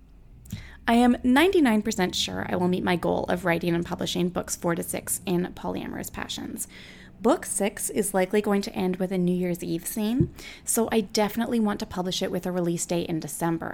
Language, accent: English, American